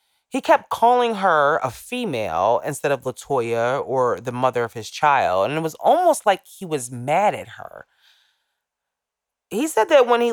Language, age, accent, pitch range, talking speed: English, 30-49, American, 125-190 Hz, 175 wpm